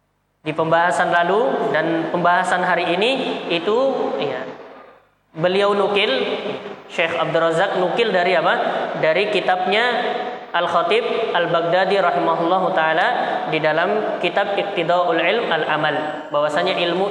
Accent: native